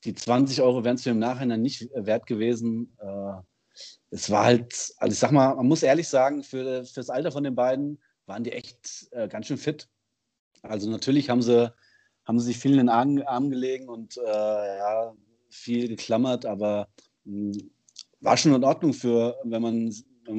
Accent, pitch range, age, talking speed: German, 105-125 Hz, 30-49, 185 wpm